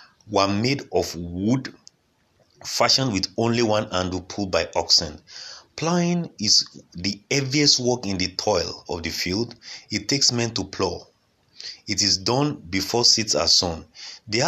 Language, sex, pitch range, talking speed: English, male, 95-130 Hz, 150 wpm